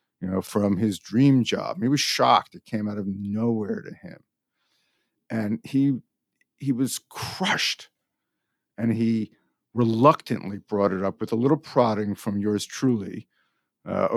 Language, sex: English, male